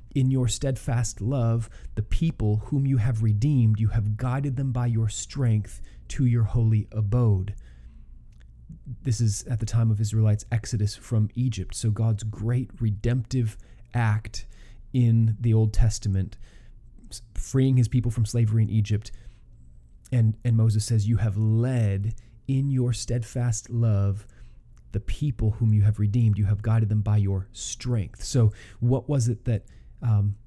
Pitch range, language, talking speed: 105-125 Hz, English, 150 wpm